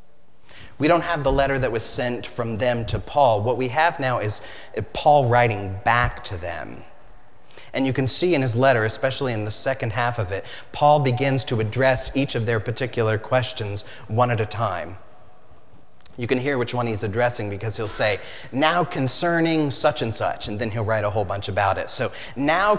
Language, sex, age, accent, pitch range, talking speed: English, male, 30-49, American, 105-135 Hz, 195 wpm